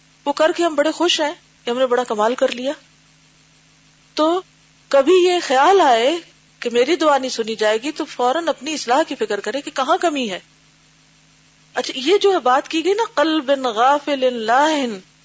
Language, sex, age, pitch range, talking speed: Urdu, female, 40-59, 190-305 Hz, 180 wpm